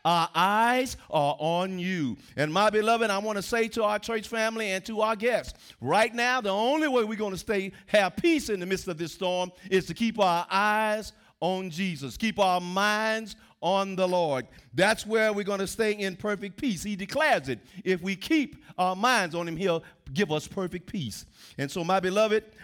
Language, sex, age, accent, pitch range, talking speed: English, male, 50-69, American, 165-215 Hz, 205 wpm